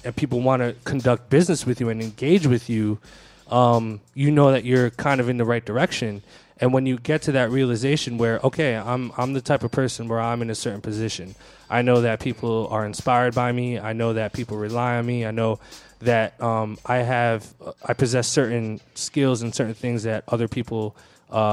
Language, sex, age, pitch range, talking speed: English, male, 20-39, 115-130 Hz, 210 wpm